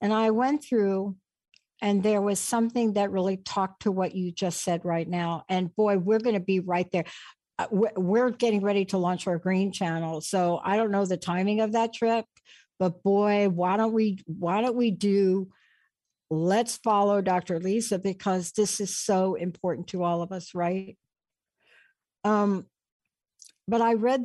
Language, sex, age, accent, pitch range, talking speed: English, female, 60-79, American, 185-220 Hz, 170 wpm